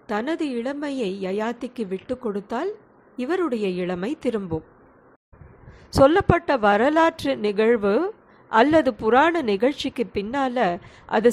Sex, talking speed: female, 85 wpm